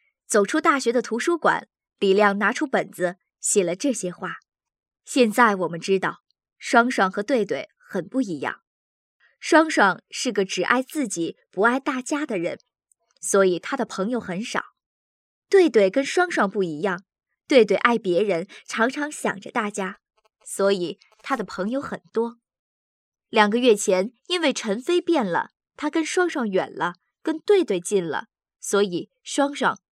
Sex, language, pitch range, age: male, Vietnamese, 195-290 Hz, 20-39